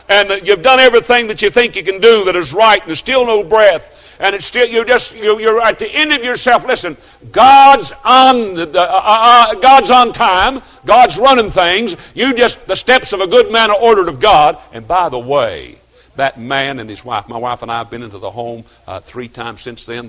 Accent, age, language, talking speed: American, 60-79, English, 235 wpm